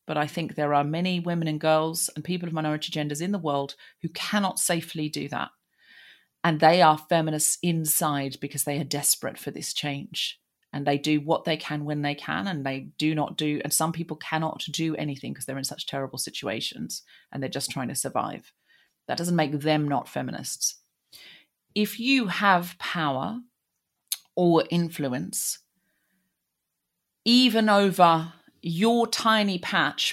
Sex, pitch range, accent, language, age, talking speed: female, 150-170 Hz, British, English, 40-59, 165 wpm